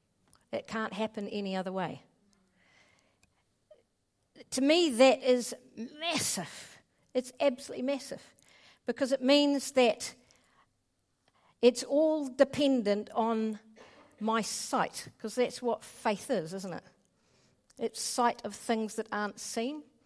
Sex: female